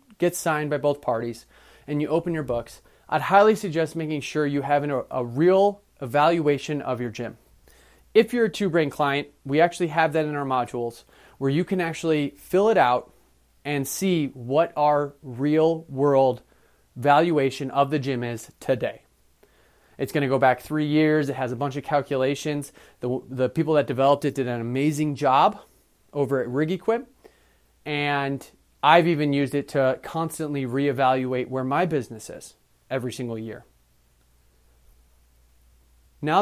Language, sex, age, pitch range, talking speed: English, male, 30-49, 125-155 Hz, 165 wpm